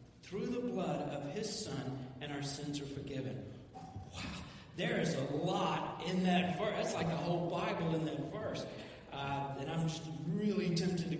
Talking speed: 180 wpm